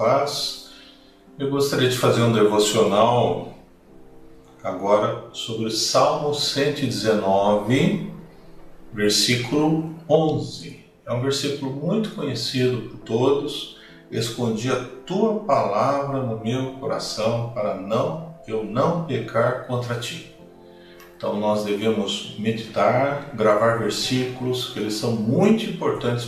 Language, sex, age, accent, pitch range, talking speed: Portuguese, male, 50-69, Brazilian, 110-140 Hz, 100 wpm